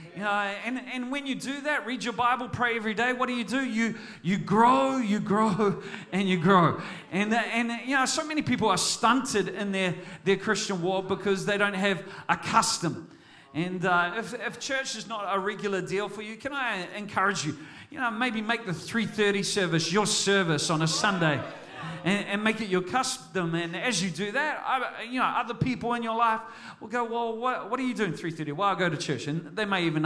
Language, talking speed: English, 220 wpm